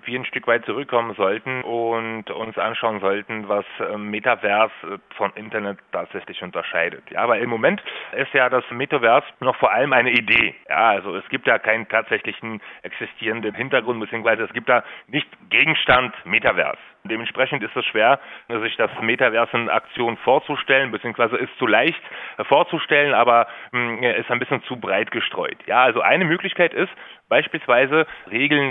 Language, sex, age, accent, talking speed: German, male, 30-49, German, 155 wpm